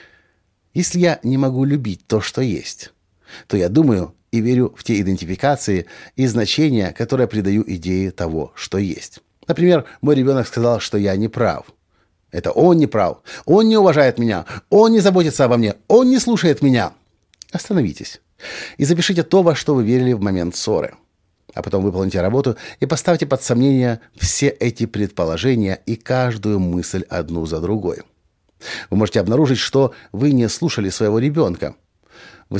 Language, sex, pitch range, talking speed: Russian, male, 100-140 Hz, 160 wpm